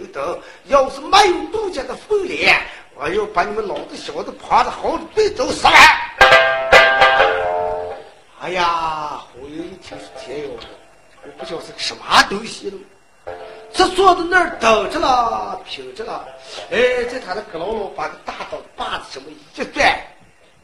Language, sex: Chinese, male